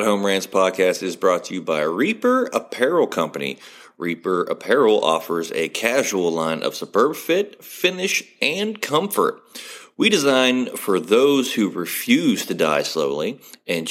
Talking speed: 140 wpm